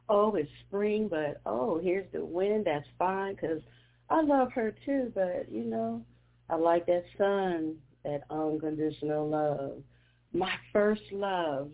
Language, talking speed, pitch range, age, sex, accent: English, 145 wpm, 140-200 Hz, 40-59, female, American